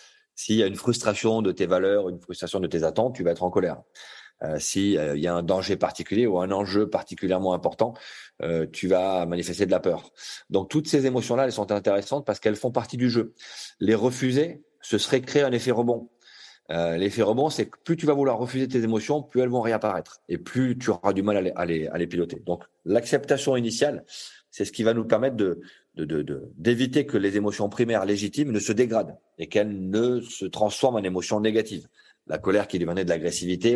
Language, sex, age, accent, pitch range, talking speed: French, male, 30-49, French, 100-130 Hz, 220 wpm